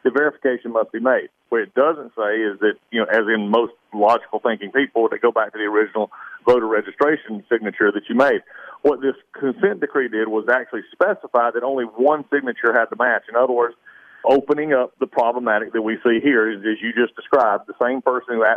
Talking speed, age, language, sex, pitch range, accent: 215 wpm, 40-59, English, male, 115-140 Hz, American